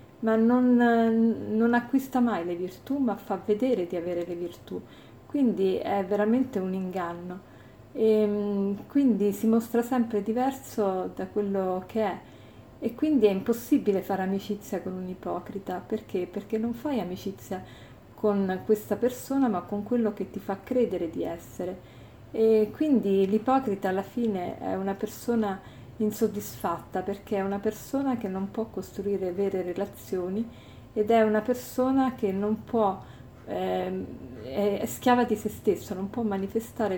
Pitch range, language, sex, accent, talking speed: 185-230 Hz, Italian, female, native, 145 wpm